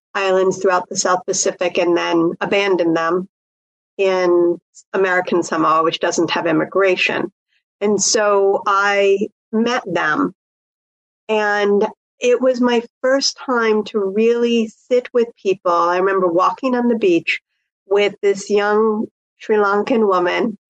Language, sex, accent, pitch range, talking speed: English, female, American, 185-230 Hz, 130 wpm